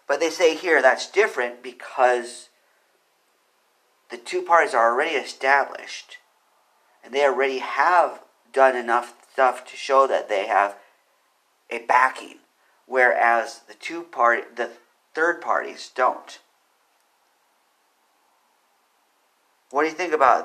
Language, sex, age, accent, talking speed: English, male, 40-59, American, 115 wpm